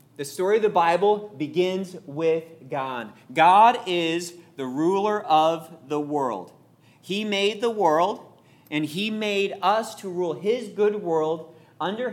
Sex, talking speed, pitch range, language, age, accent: male, 145 wpm, 140-180 Hz, English, 40-59, American